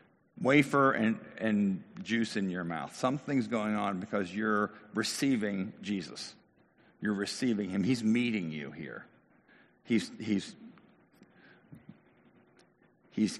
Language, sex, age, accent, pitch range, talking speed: English, male, 50-69, American, 100-125 Hz, 110 wpm